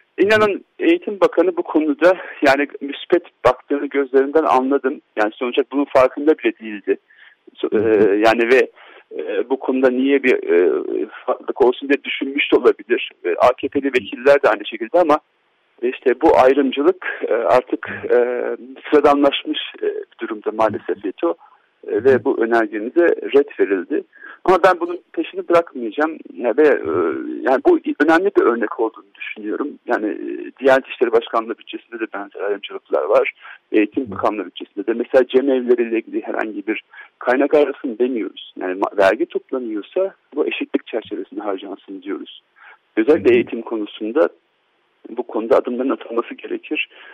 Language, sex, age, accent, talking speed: Turkish, male, 50-69, native, 125 wpm